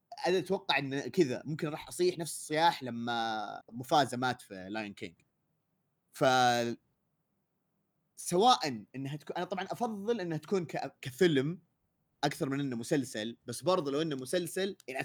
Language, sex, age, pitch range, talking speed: Arabic, male, 30-49, 110-165 Hz, 140 wpm